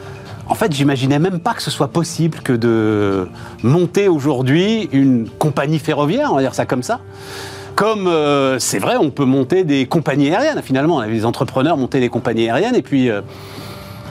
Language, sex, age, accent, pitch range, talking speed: French, male, 40-59, French, 115-160 Hz, 180 wpm